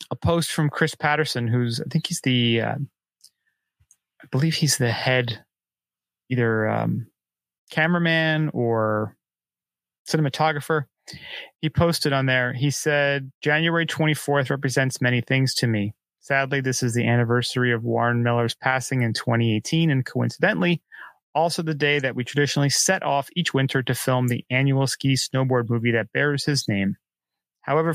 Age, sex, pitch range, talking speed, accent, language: 30-49, male, 125-155 Hz, 145 wpm, American, English